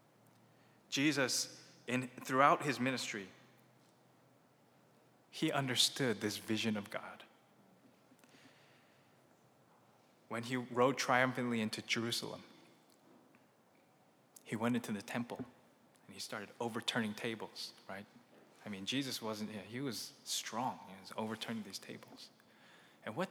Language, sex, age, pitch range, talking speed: English, male, 20-39, 120-145 Hz, 110 wpm